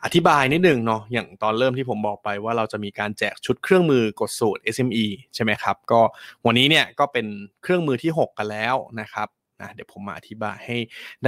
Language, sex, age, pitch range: Thai, male, 20-39, 110-135 Hz